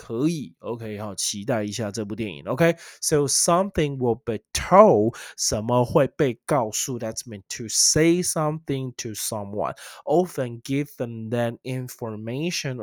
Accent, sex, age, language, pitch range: native, male, 20-39, Chinese, 105-125 Hz